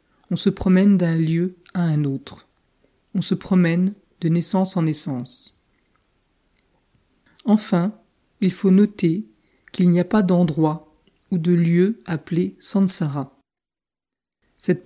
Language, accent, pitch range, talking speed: French, French, 165-195 Hz, 120 wpm